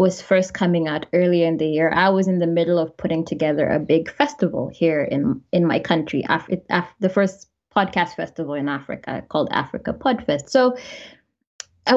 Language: English